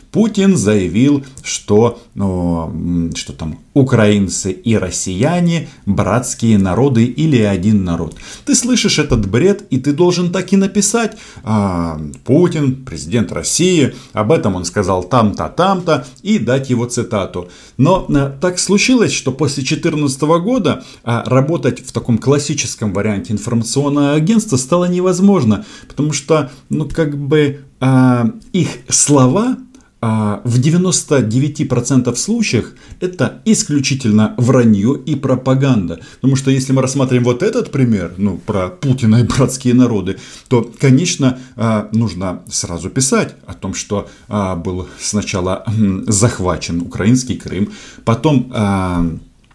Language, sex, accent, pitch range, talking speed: Russian, male, native, 105-150 Hz, 115 wpm